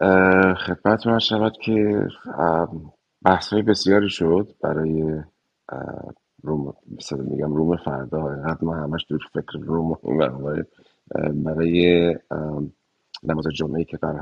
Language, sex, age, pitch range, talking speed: Persian, male, 30-49, 75-85 Hz, 100 wpm